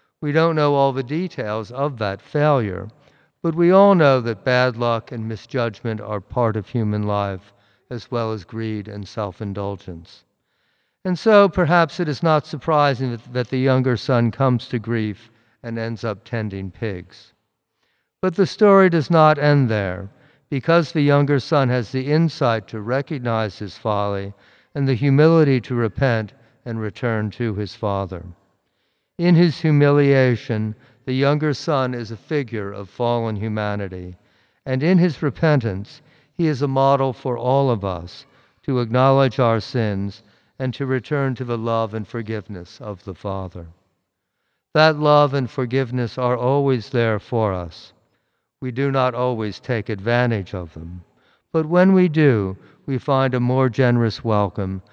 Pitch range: 105-140 Hz